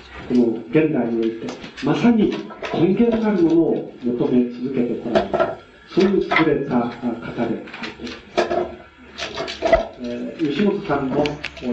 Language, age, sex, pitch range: Japanese, 40-59, male, 125-180 Hz